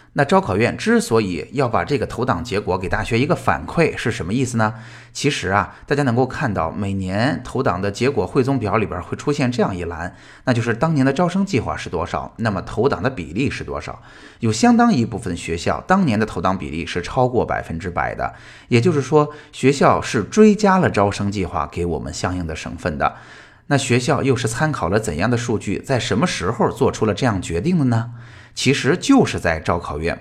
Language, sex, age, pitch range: Chinese, male, 20-39, 105-145 Hz